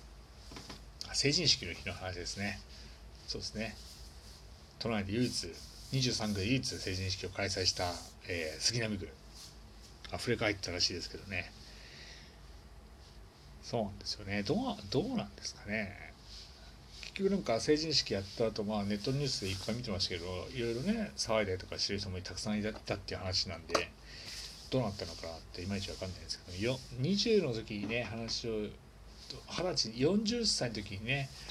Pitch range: 85-120 Hz